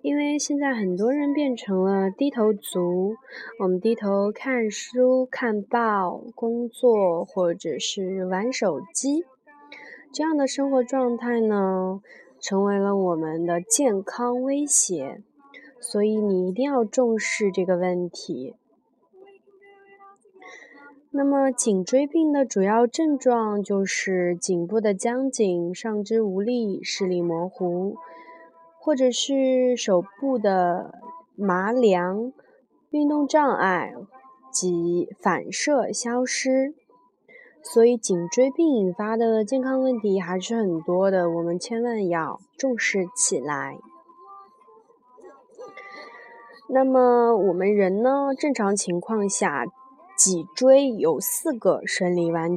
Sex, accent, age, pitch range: female, native, 20-39, 190-275 Hz